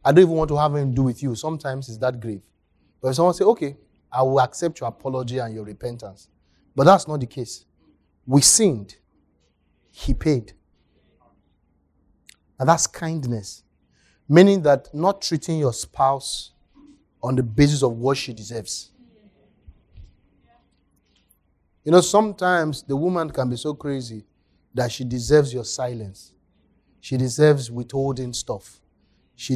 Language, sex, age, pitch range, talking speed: English, male, 30-49, 85-145 Hz, 145 wpm